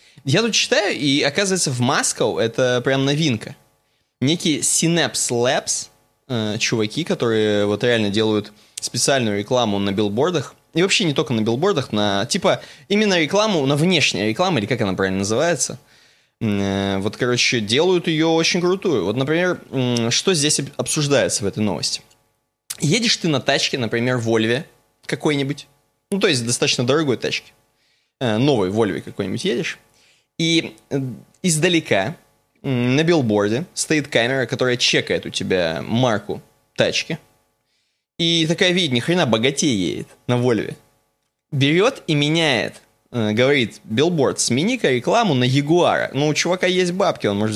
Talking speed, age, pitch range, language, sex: 135 wpm, 20-39, 110-160 Hz, Russian, male